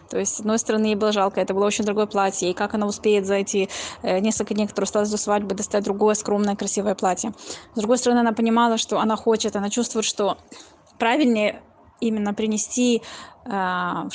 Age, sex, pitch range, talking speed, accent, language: 20-39, female, 200-230 Hz, 195 wpm, native, Russian